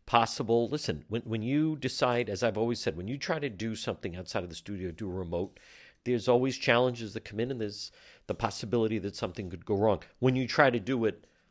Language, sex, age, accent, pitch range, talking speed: English, male, 50-69, American, 100-130 Hz, 230 wpm